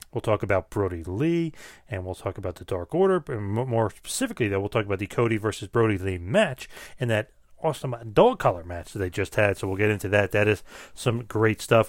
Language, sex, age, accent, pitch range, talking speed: English, male, 30-49, American, 100-125 Hz, 225 wpm